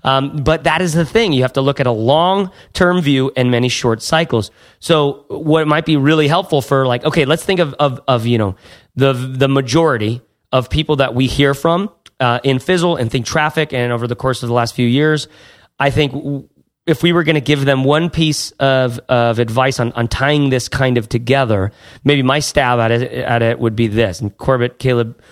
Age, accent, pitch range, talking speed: 30-49, American, 120-150 Hz, 220 wpm